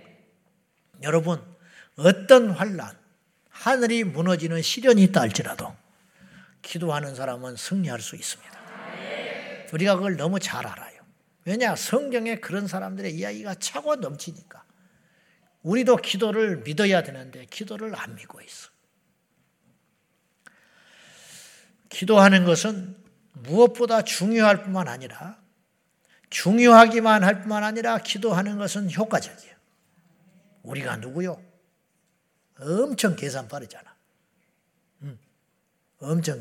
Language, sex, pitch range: Korean, male, 170-215 Hz